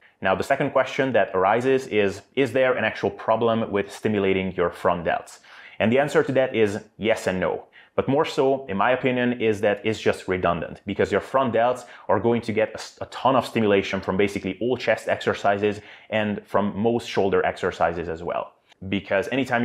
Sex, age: male, 30-49